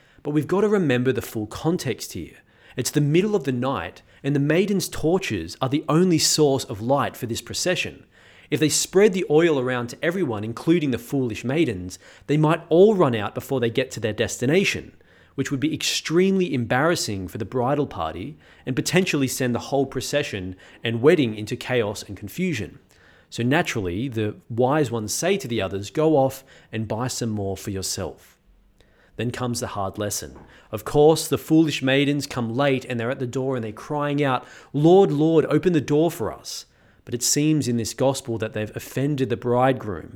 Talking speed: 190 wpm